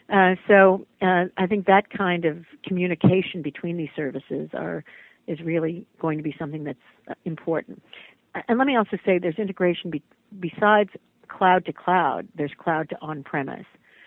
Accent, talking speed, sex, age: American, 160 wpm, female, 50-69